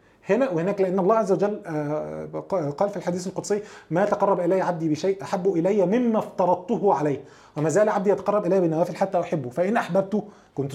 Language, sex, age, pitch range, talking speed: Arabic, male, 20-39, 170-220 Hz, 175 wpm